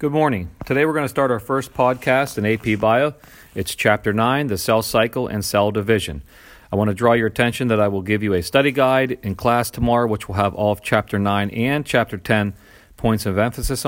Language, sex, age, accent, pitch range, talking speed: English, male, 40-59, American, 105-130 Hz, 225 wpm